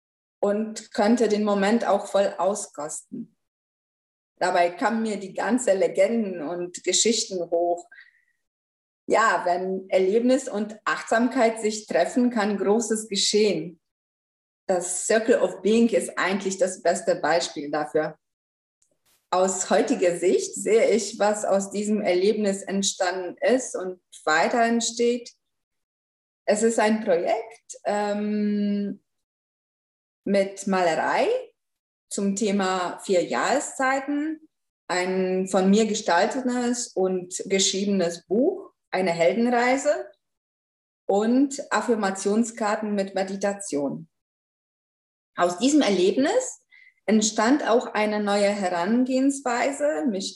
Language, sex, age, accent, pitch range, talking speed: German, female, 20-39, German, 185-240 Hz, 100 wpm